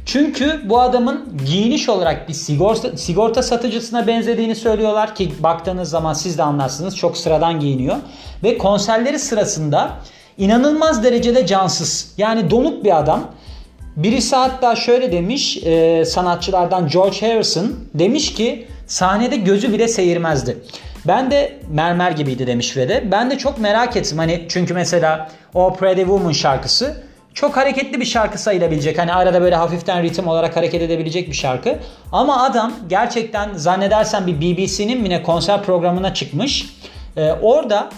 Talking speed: 140 wpm